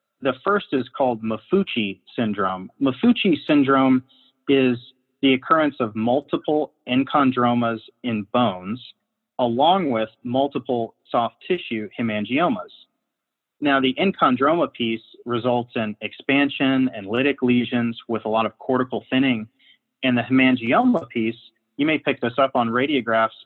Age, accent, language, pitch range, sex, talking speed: 30-49, American, English, 115-135 Hz, male, 125 wpm